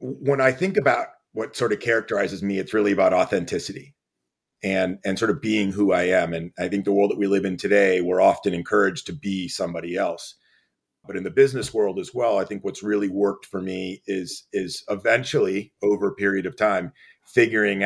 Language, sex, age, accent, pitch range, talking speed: English, male, 40-59, American, 95-110 Hz, 205 wpm